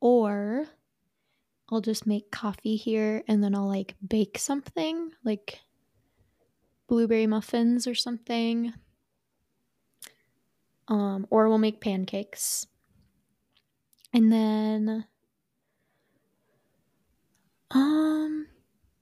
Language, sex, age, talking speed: English, female, 20-39, 80 wpm